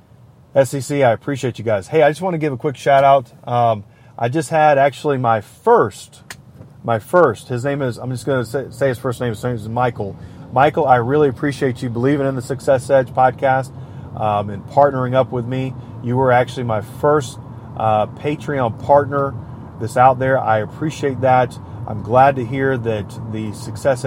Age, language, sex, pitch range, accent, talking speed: 30-49, English, male, 115-135 Hz, American, 195 wpm